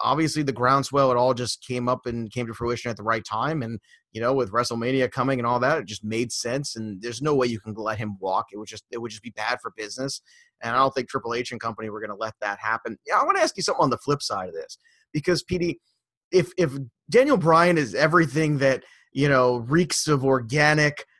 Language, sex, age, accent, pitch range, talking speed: English, male, 30-49, American, 115-150 Hz, 250 wpm